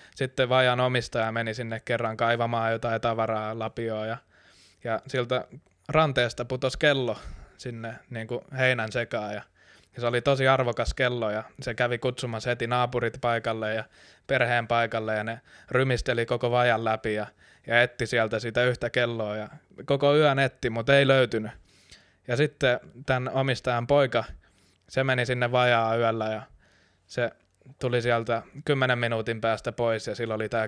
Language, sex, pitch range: Finnish, male, 115-130 Hz